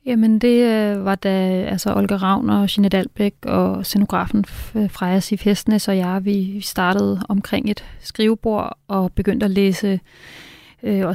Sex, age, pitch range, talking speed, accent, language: female, 30-49, 185-210 Hz, 150 wpm, native, Danish